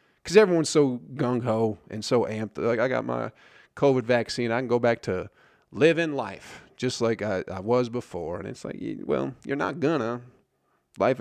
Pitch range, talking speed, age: 95-125 Hz, 180 wpm, 30-49